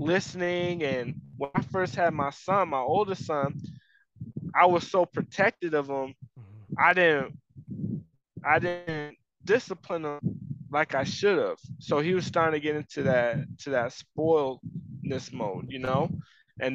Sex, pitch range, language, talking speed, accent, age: male, 135-170 Hz, English, 150 wpm, American, 20-39